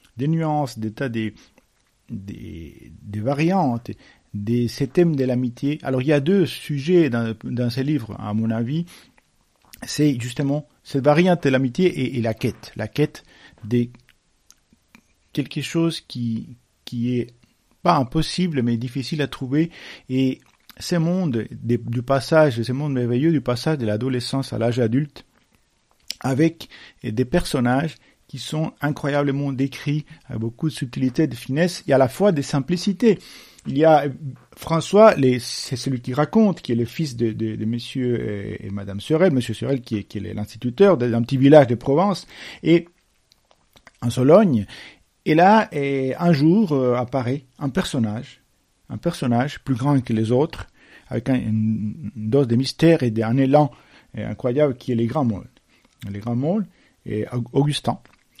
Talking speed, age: 160 wpm, 50-69